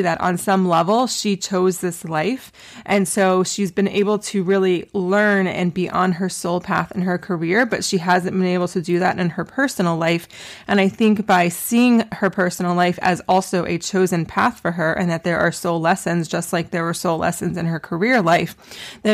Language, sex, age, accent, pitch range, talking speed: English, female, 20-39, American, 175-205 Hz, 215 wpm